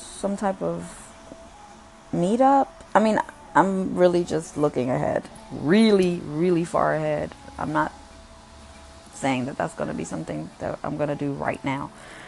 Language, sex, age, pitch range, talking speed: Amharic, female, 20-39, 140-190 Hz, 150 wpm